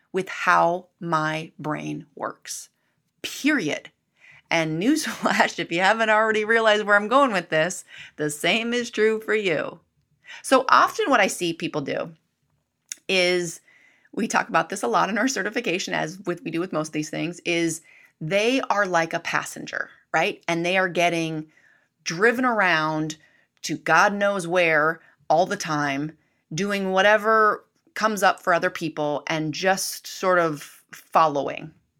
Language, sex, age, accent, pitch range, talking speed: English, female, 30-49, American, 160-220 Hz, 155 wpm